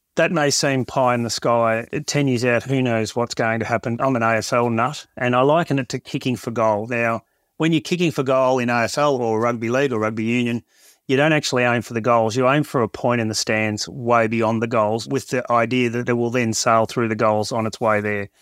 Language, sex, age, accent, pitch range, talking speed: English, male, 30-49, Australian, 120-140 Hz, 250 wpm